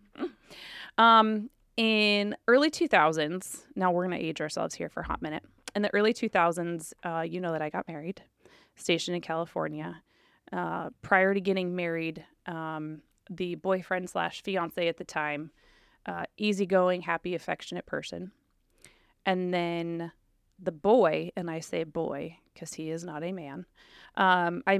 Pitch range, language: 160-190 Hz, English